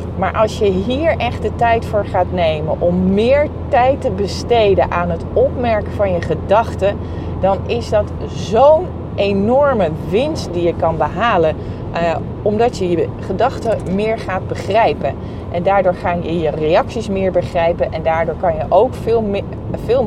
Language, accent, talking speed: Dutch, Dutch, 160 wpm